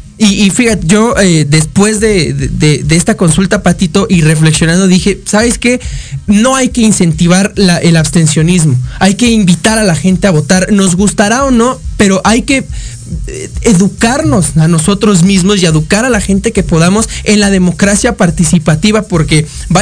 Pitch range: 170-240 Hz